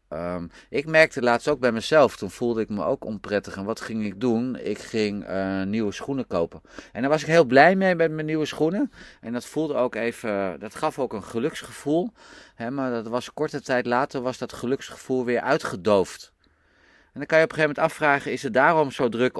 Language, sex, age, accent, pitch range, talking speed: Dutch, male, 30-49, Dutch, 100-135 Hz, 225 wpm